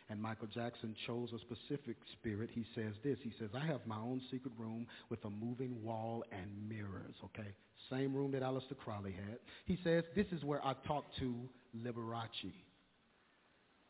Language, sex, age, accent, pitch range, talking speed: English, male, 40-59, American, 110-135 Hz, 175 wpm